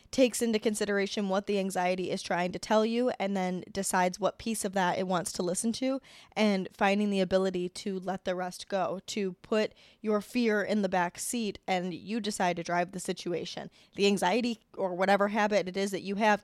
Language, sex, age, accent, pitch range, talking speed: English, female, 10-29, American, 180-210 Hz, 210 wpm